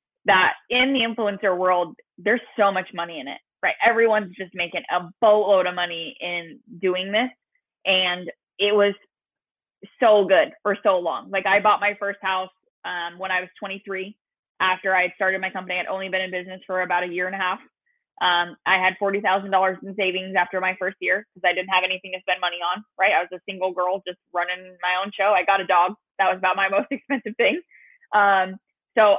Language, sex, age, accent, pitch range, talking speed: English, female, 20-39, American, 180-205 Hz, 210 wpm